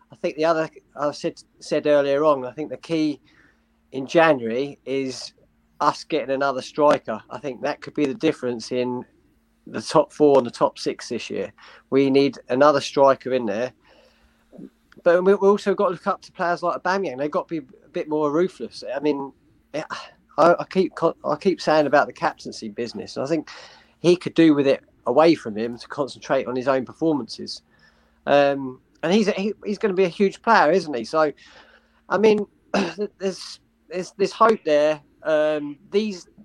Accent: British